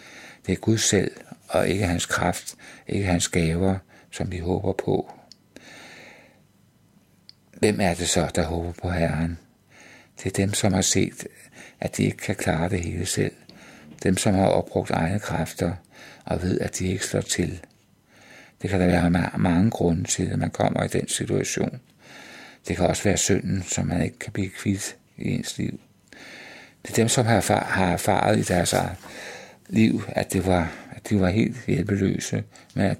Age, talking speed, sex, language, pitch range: 60-79, 180 wpm, male, Danish, 90-105 Hz